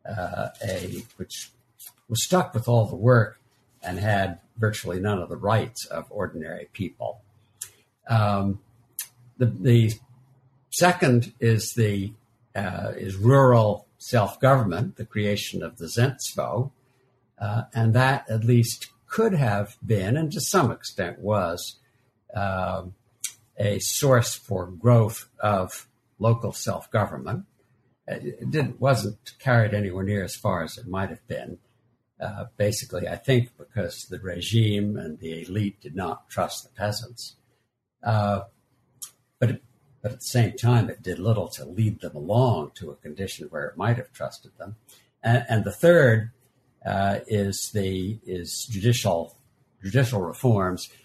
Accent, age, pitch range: American, 60-79, 100-125 Hz